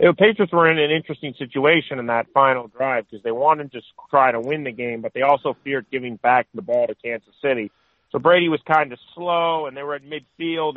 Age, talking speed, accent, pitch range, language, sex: 40-59, 235 wpm, American, 115-140 Hz, English, male